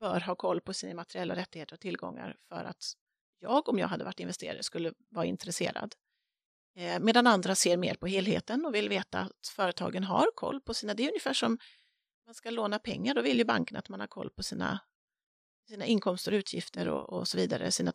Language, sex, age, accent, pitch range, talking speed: Swedish, female, 30-49, native, 200-250 Hz, 205 wpm